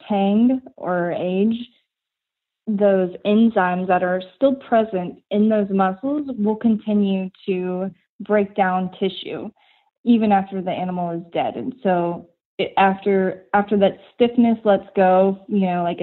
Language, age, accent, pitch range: English, 20-39, American, 180-230 Hz